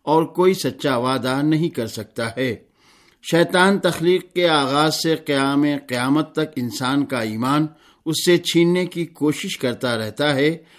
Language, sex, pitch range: Urdu, male, 130-165 Hz